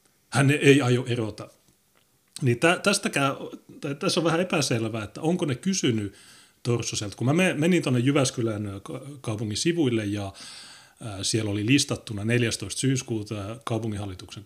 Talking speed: 110 wpm